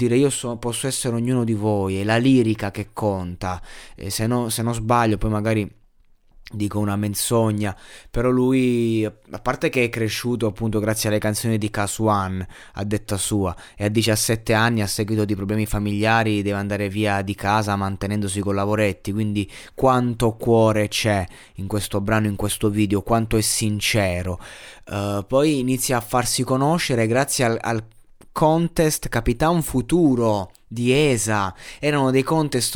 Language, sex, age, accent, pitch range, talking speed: Italian, male, 20-39, native, 105-130 Hz, 160 wpm